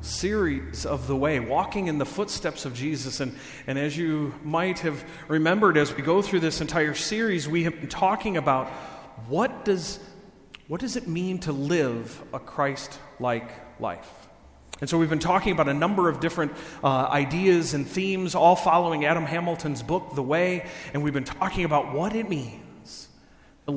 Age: 40-59